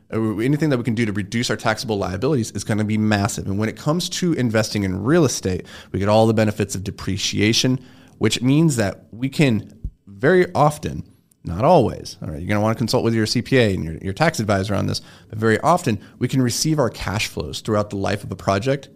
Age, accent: 30-49, American